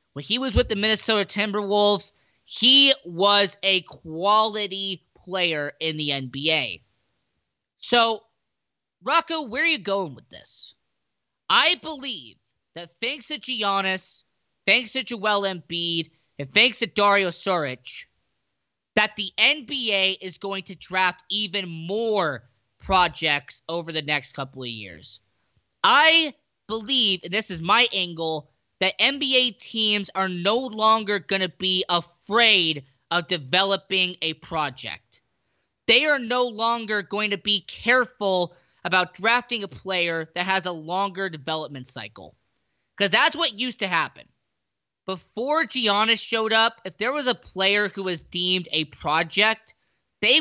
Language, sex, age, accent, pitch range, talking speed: English, male, 30-49, American, 165-220 Hz, 135 wpm